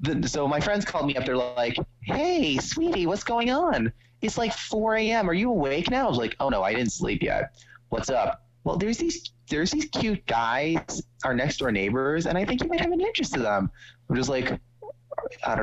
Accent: American